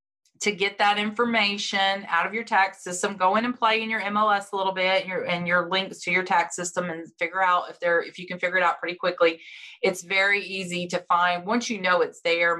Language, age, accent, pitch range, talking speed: English, 30-49, American, 175-230 Hz, 235 wpm